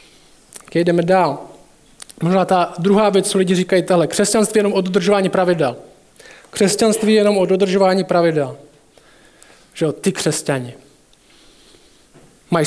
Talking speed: 130 wpm